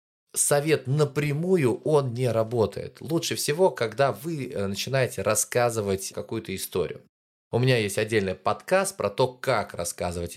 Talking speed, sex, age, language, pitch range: 125 wpm, male, 20-39, Russian, 95-130 Hz